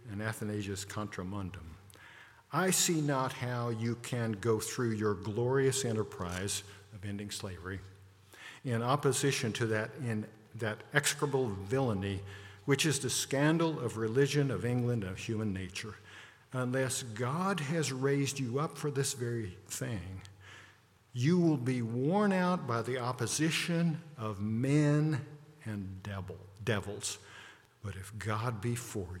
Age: 50-69